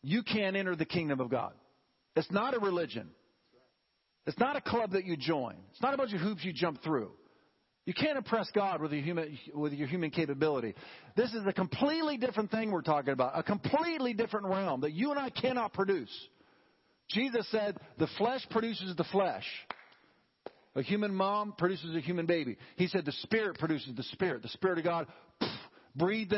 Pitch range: 135-195 Hz